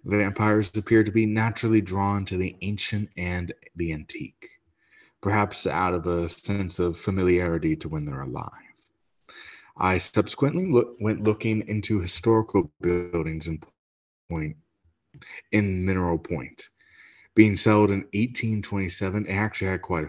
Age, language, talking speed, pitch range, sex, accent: 30-49, English, 130 wpm, 85-105 Hz, male, American